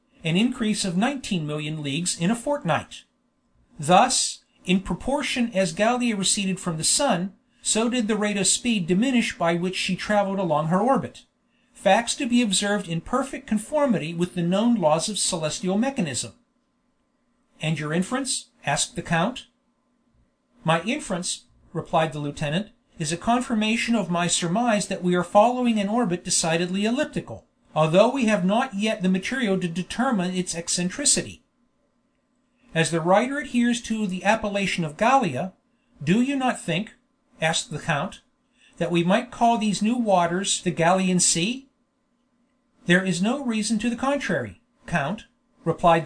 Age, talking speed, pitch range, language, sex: 50-69, 150 wpm, 180-250 Hz, English, male